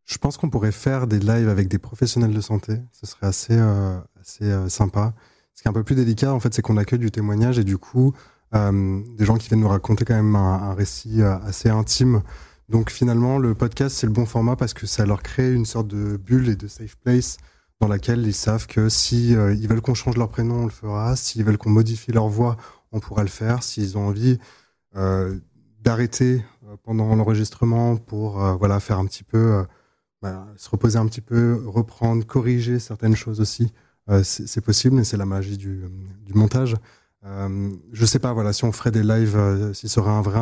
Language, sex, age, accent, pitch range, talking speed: French, male, 20-39, French, 100-115 Hz, 225 wpm